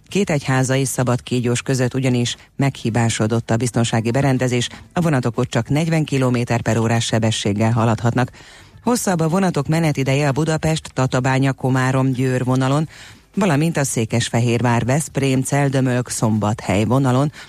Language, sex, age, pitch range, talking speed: Hungarian, female, 30-49, 120-140 Hz, 105 wpm